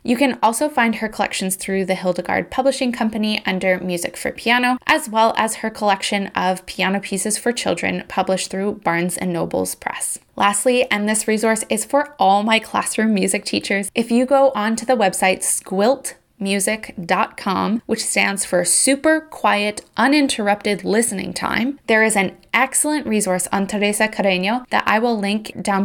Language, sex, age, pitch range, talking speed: English, female, 20-39, 190-235 Hz, 160 wpm